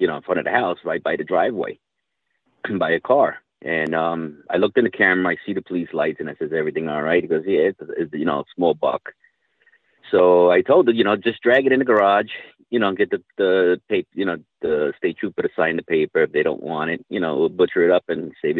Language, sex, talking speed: English, male, 260 wpm